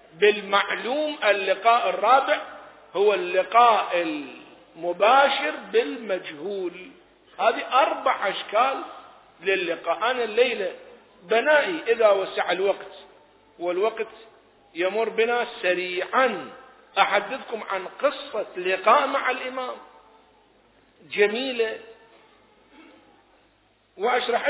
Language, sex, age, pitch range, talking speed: Arabic, male, 50-69, 210-280 Hz, 70 wpm